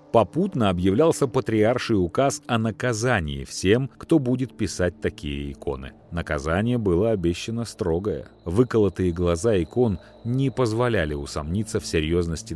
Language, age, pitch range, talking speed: Russian, 40-59, 80-115 Hz, 115 wpm